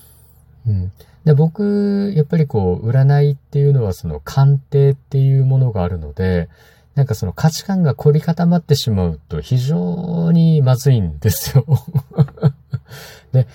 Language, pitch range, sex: Japanese, 90-140 Hz, male